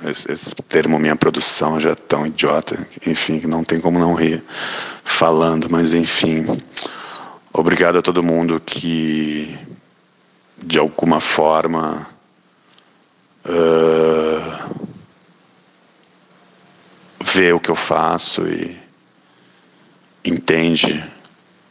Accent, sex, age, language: Brazilian, male, 50-69, Portuguese